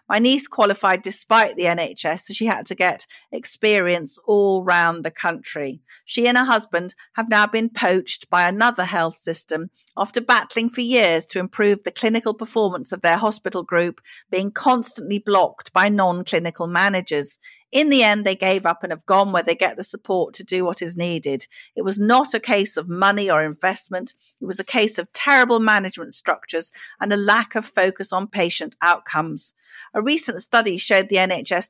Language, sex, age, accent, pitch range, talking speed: English, female, 40-59, British, 175-220 Hz, 185 wpm